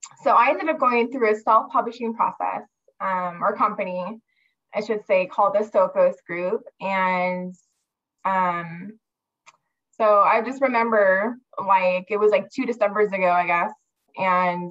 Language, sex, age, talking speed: English, female, 20-39, 145 wpm